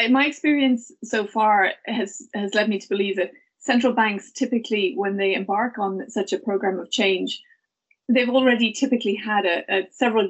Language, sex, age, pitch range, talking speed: English, female, 30-49, 200-250 Hz, 175 wpm